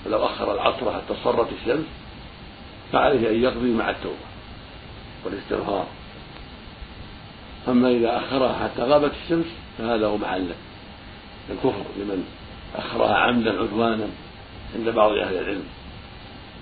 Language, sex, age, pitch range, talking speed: Arabic, male, 60-79, 105-120 Hz, 110 wpm